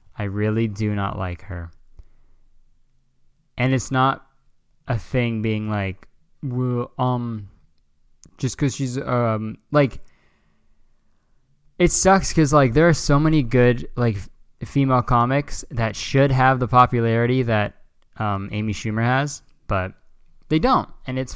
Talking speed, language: 130 wpm, English